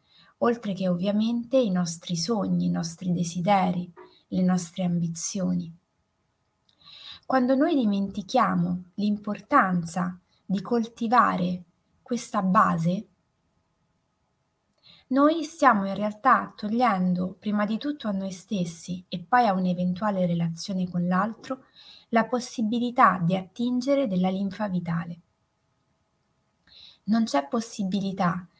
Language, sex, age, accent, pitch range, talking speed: Italian, female, 20-39, native, 180-230 Hz, 100 wpm